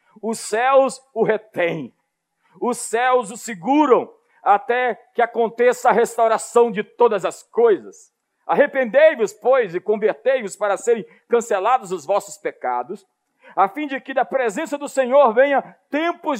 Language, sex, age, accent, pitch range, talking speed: Portuguese, male, 50-69, Brazilian, 235-300 Hz, 135 wpm